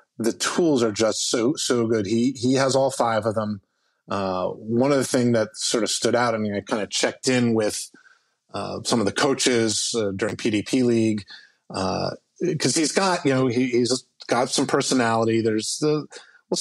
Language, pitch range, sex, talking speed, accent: English, 110-130 Hz, male, 200 wpm, American